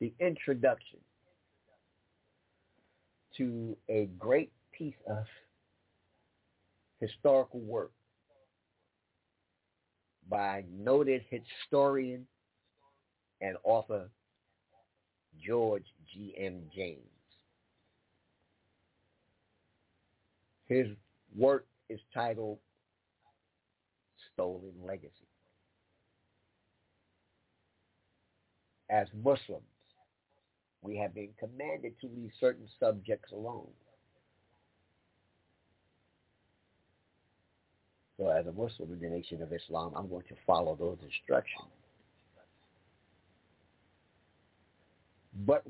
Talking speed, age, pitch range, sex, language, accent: 65 wpm, 50-69, 90-120 Hz, male, English, American